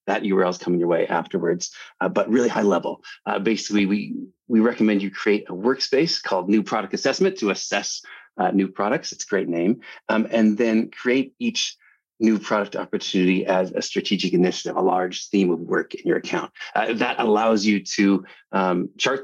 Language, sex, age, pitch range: English, male, 30-49, 95-120 Hz